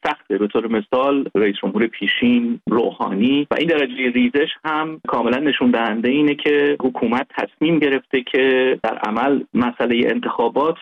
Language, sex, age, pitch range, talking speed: Persian, male, 30-49, 120-155 Hz, 145 wpm